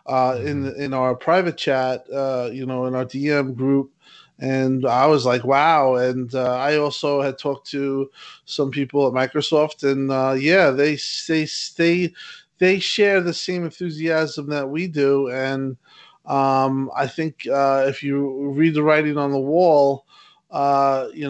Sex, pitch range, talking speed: male, 135-155 Hz, 165 wpm